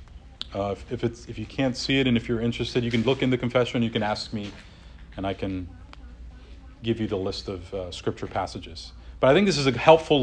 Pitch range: 90-130 Hz